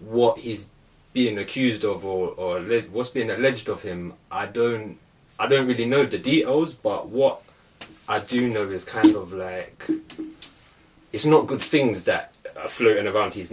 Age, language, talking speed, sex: 20-39, English, 175 wpm, male